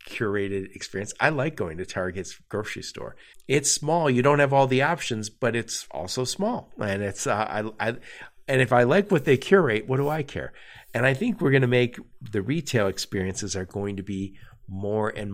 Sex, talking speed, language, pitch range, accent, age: male, 205 wpm, English, 105-135 Hz, American, 50-69